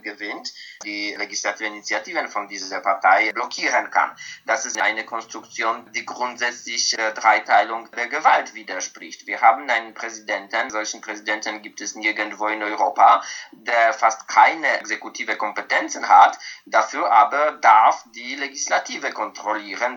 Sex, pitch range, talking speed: male, 105-115 Hz, 130 wpm